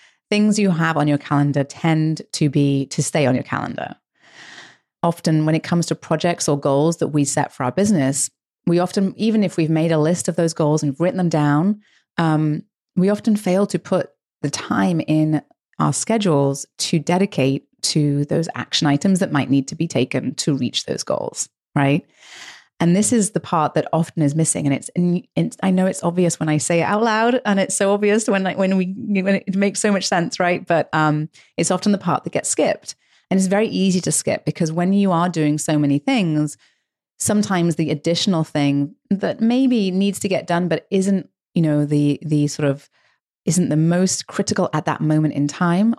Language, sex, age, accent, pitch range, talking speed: English, female, 30-49, British, 150-190 Hz, 205 wpm